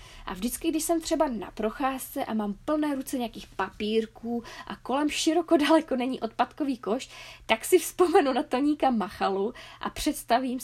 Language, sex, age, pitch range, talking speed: Czech, female, 20-39, 215-275 Hz, 160 wpm